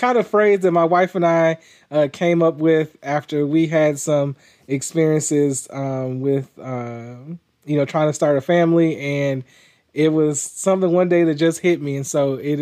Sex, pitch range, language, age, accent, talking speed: male, 140-165 Hz, English, 20-39, American, 190 wpm